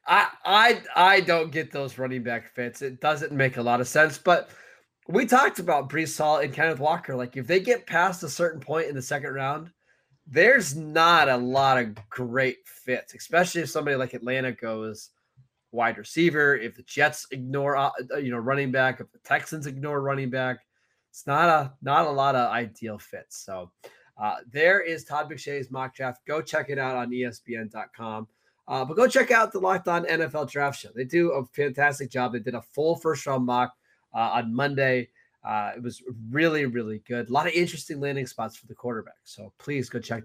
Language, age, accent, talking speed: English, 20-39, American, 200 wpm